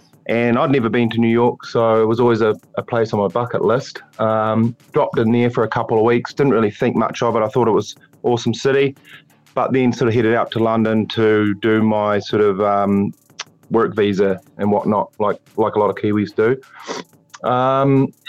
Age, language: 30-49, English